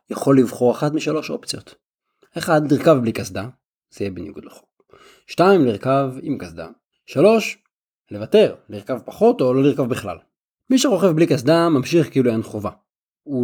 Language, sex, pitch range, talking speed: Hebrew, male, 120-170 Hz, 150 wpm